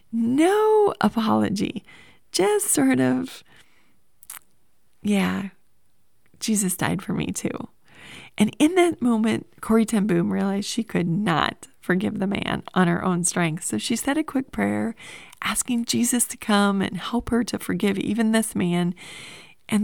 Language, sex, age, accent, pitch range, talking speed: English, female, 30-49, American, 180-230 Hz, 145 wpm